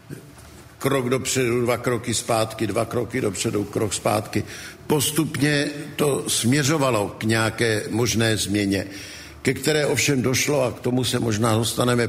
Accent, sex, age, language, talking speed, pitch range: native, male, 60-79, Czech, 135 wpm, 110-125 Hz